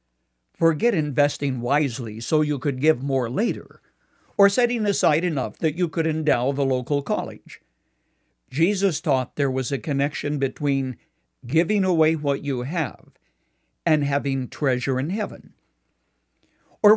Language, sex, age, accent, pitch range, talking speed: English, male, 60-79, American, 135-165 Hz, 135 wpm